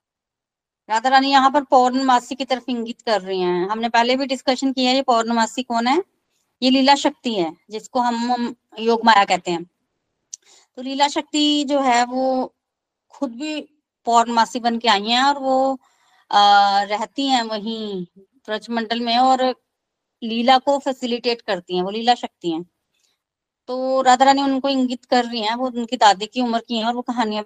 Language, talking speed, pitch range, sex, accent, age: Hindi, 175 wpm, 225-270 Hz, female, native, 20-39